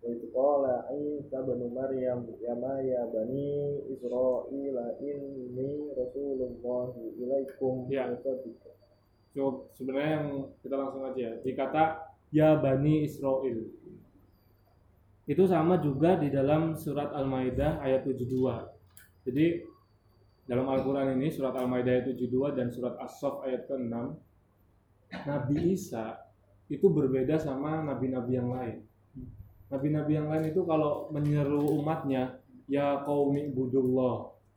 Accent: native